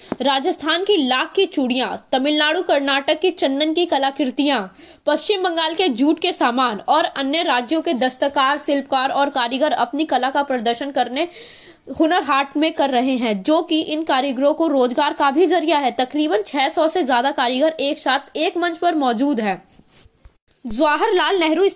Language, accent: Indonesian, Indian